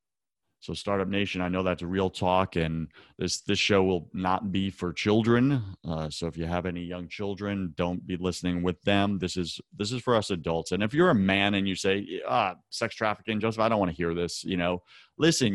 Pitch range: 85-105 Hz